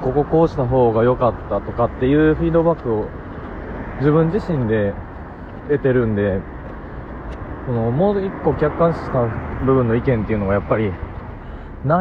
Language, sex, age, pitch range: Japanese, male, 20-39, 90-125 Hz